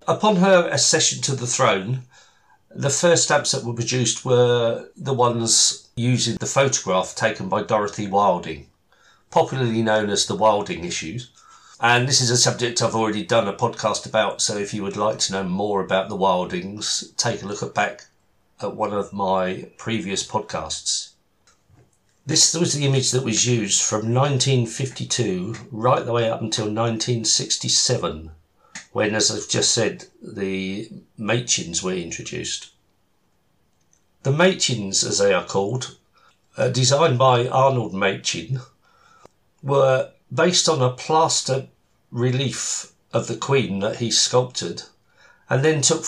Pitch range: 105-135 Hz